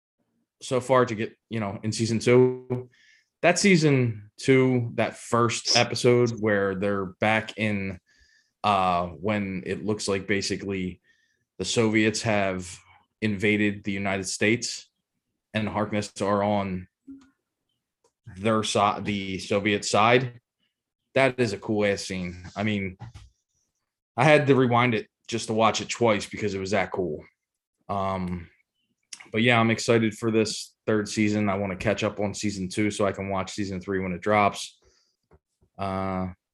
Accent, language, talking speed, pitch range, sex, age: American, English, 150 wpm, 95-110 Hz, male, 20-39